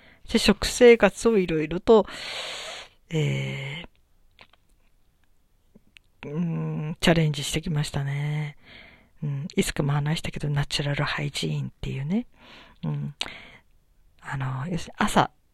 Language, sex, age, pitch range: Japanese, female, 40-59, 150-210 Hz